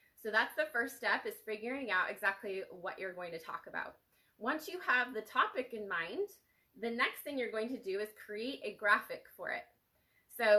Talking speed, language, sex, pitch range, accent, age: 205 wpm, English, female, 185-235 Hz, American, 20-39